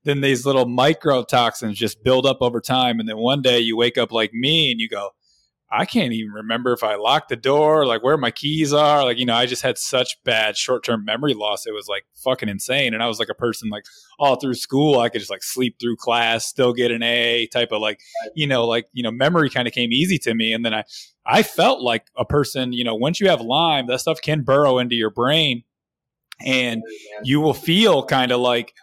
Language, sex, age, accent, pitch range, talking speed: English, male, 20-39, American, 115-135 Hz, 245 wpm